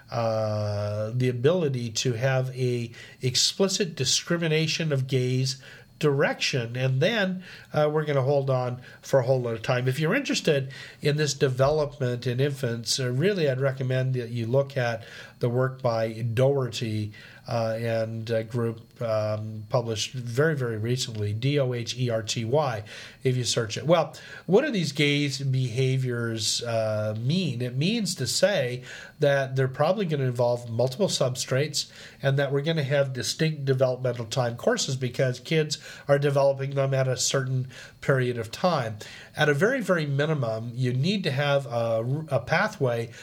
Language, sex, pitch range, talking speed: English, male, 115-140 Hz, 155 wpm